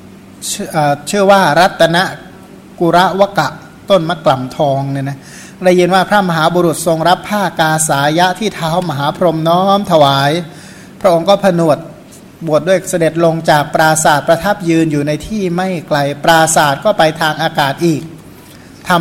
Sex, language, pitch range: male, Thai, 155-180 Hz